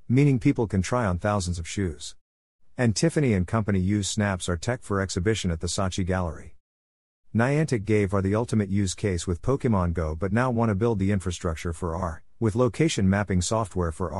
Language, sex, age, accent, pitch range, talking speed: English, male, 50-69, American, 90-115 Hz, 195 wpm